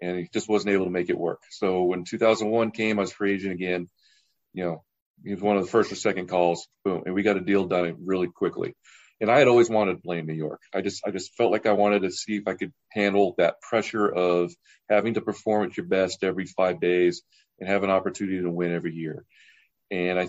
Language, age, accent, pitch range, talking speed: English, 40-59, American, 90-110 Hz, 250 wpm